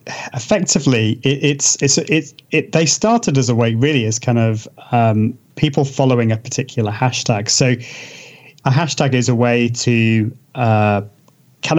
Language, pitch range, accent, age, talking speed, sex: English, 120-150 Hz, British, 30-49, 155 wpm, male